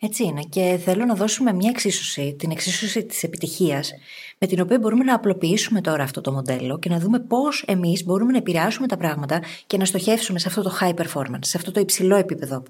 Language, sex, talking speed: Greek, female, 215 wpm